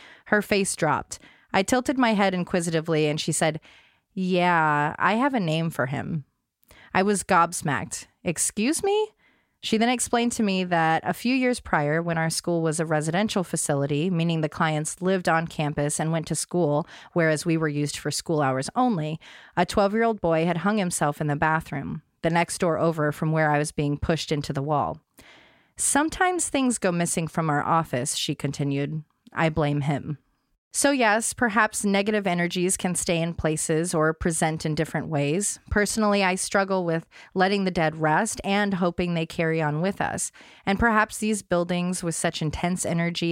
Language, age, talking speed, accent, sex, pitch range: English, 30-49, 180 wpm, American, female, 155-195 Hz